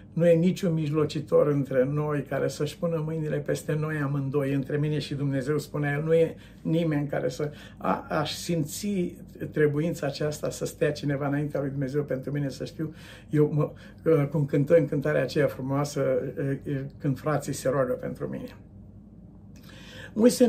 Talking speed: 155 wpm